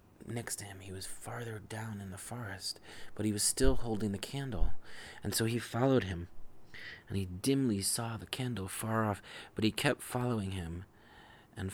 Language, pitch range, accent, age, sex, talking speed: English, 100-115 Hz, American, 30-49, male, 185 wpm